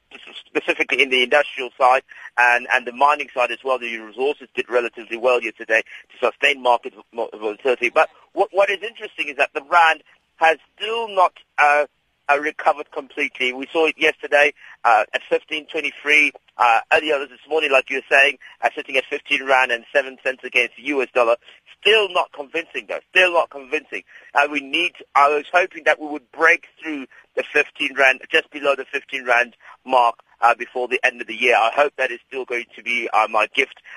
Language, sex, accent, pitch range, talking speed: English, male, British, 125-155 Hz, 200 wpm